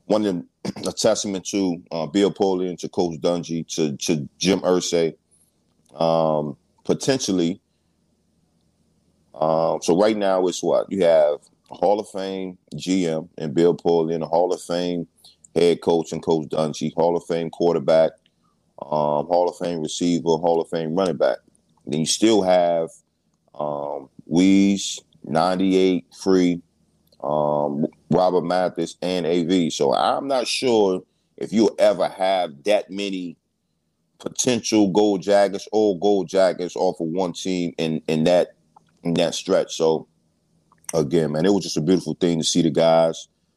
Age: 30-49